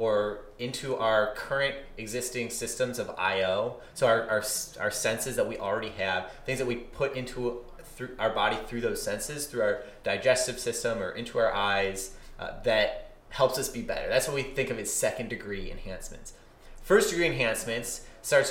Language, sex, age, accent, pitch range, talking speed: English, male, 20-39, American, 110-130 Hz, 180 wpm